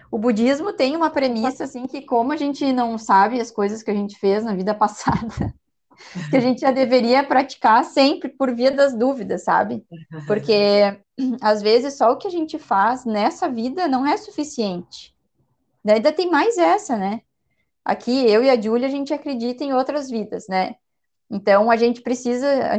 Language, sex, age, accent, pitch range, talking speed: Portuguese, female, 20-39, Brazilian, 210-285 Hz, 185 wpm